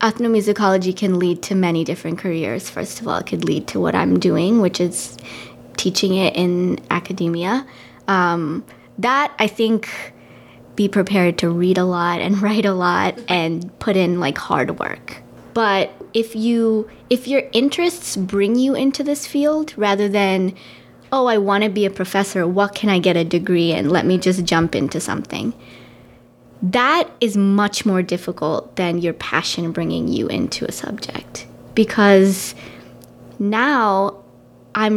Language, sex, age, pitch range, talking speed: English, female, 20-39, 180-220 Hz, 160 wpm